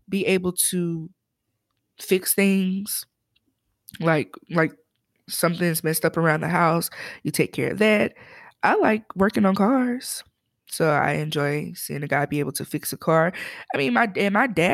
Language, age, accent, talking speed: English, 20-39, American, 160 wpm